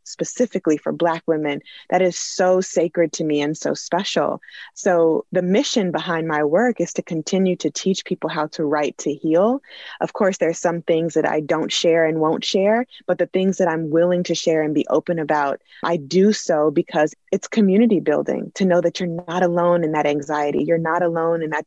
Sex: female